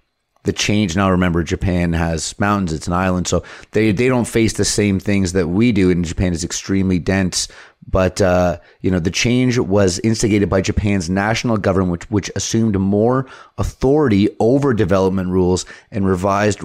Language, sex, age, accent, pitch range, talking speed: English, male, 30-49, American, 90-105 Hz, 175 wpm